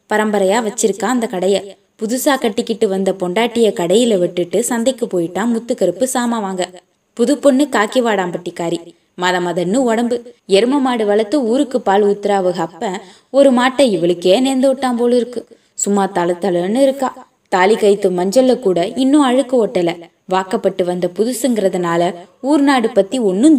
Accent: native